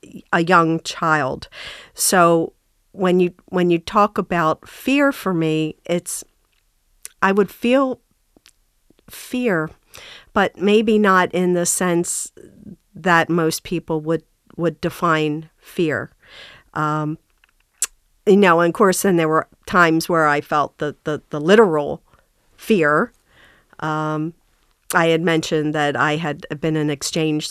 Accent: American